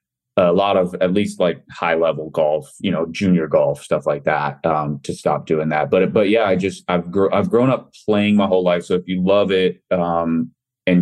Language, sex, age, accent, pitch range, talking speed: English, male, 30-49, American, 85-95 Hz, 225 wpm